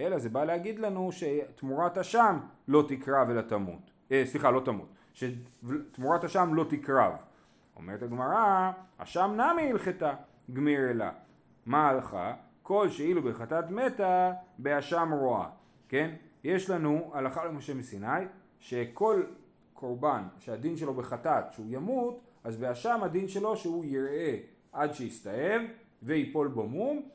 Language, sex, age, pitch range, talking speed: Hebrew, male, 30-49, 120-180 Hz, 125 wpm